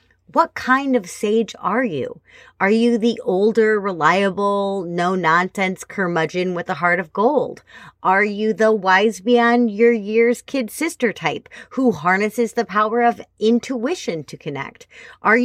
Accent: American